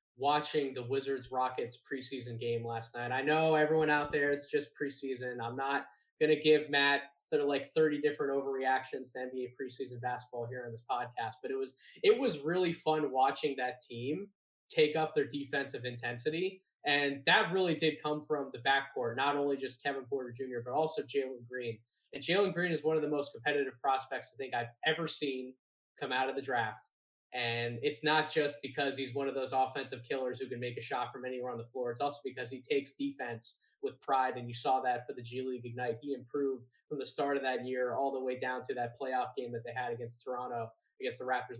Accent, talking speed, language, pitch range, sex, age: American, 220 wpm, English, 125-150 Hz, male, 20-39